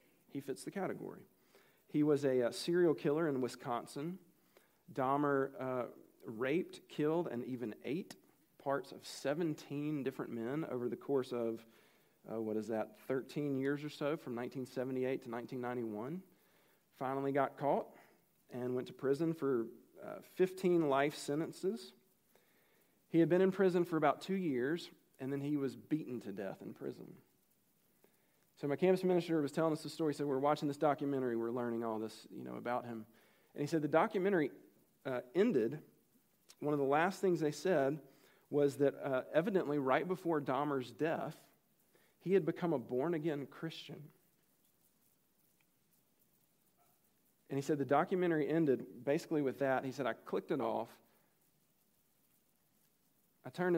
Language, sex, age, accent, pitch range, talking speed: English, male, 40-59, American, 130-165 Hz, 155 wpm